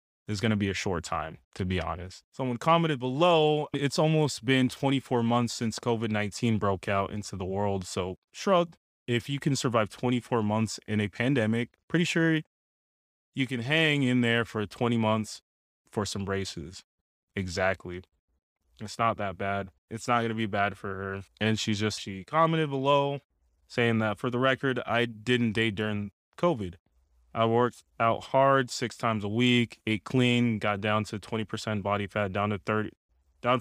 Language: English